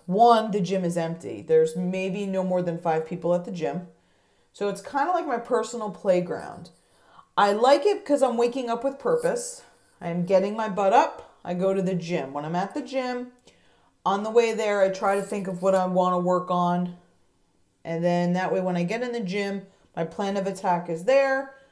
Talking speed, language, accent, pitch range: 215 wpm, English, American, 175-220 Hz